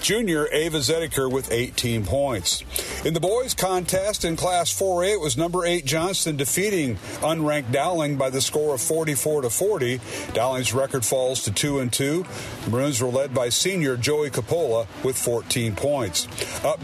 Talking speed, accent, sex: 170 wpm, American, male